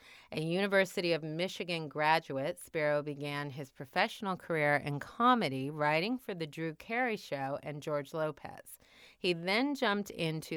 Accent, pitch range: American, 150-190 Hz